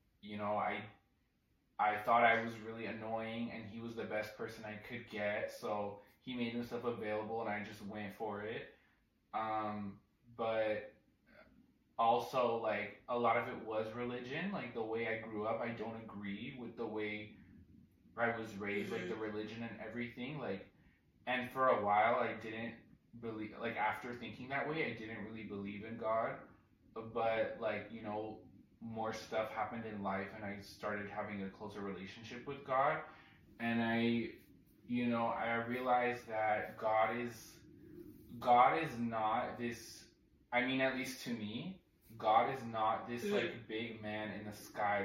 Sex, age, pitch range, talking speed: male, 20-39, 105-120 Hz, 165 wpm